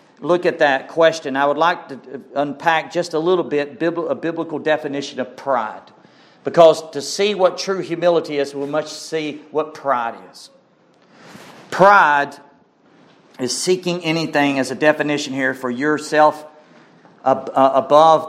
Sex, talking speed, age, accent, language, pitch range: male, 140 wpm, 50-69, American, English, 135-165 Hz